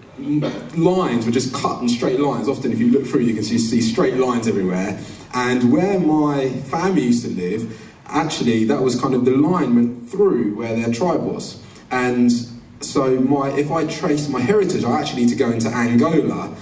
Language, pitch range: English, 115-150 Hz